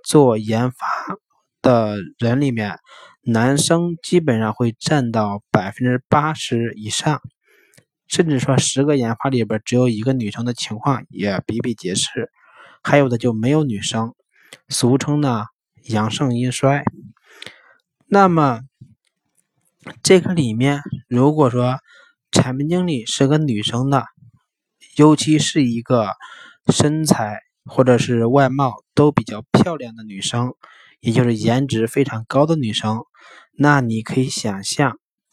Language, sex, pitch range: Chinese, male, 115-145 Hz